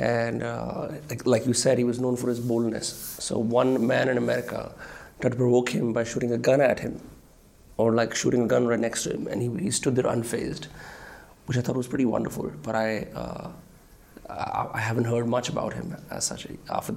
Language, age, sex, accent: Hindi, 30-49, male, native